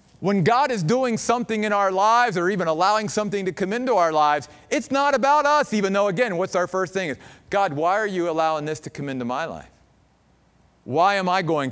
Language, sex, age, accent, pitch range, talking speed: English, male, 40-59, American, 135-195 Hz, 225 wpm